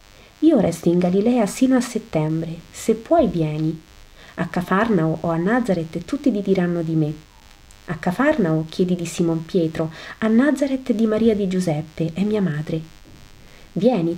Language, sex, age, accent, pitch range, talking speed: Italian, female, 40-59, native, 160-215 Hz, 150 wpm